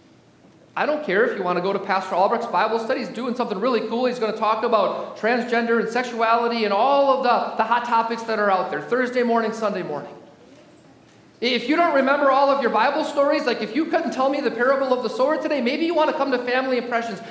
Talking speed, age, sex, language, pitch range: 245 wpm, 40-59, male, English, 225-275 Hz